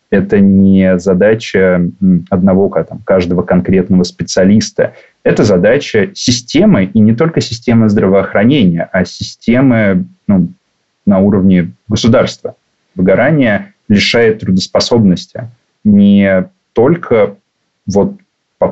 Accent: native